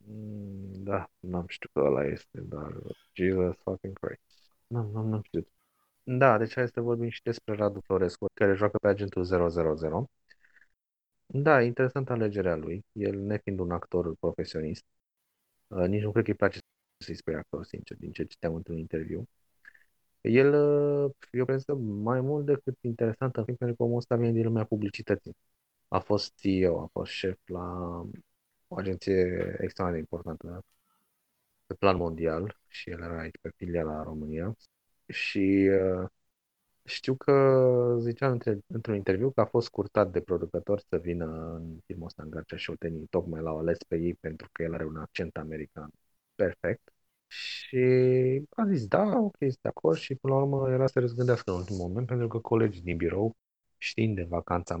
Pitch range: 85-120 Hz